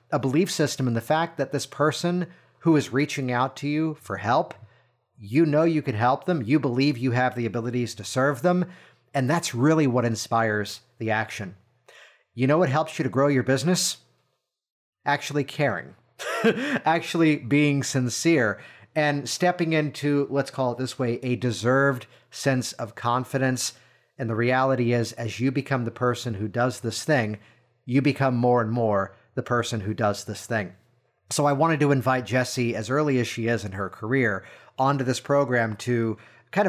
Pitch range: 115-145 Hz